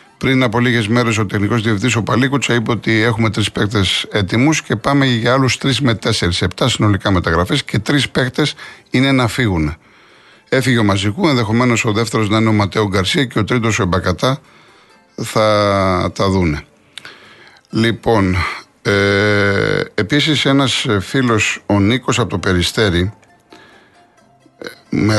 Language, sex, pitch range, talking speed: Greek, male, 100-130 Hz, 145 wpm